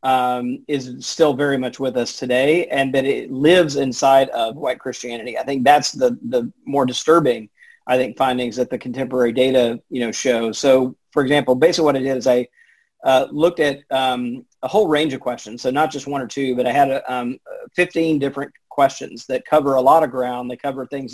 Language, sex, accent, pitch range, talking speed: English, male, American, 125-140 Hz, 205 wpm